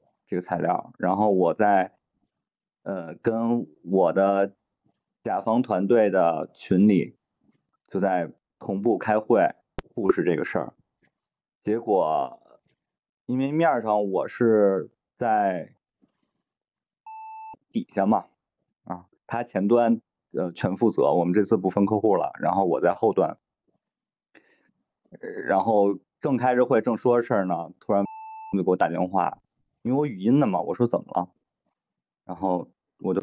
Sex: male